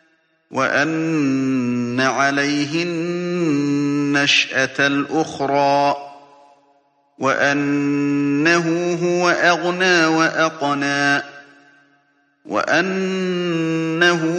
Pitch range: 140-170 Hz